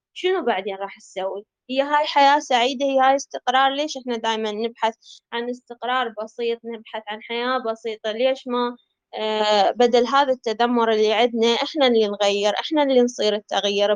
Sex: female